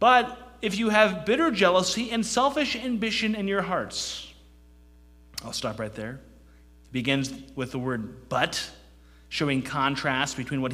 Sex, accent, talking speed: male, American, 140 wpm